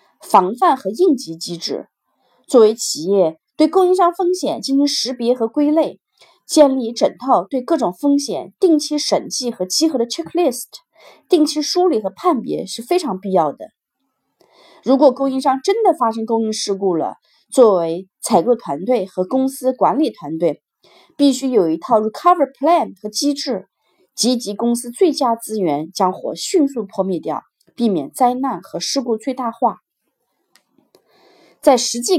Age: 30-49